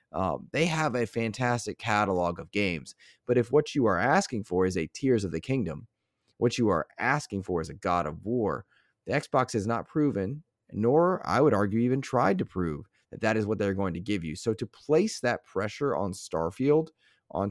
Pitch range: 95-130 Hz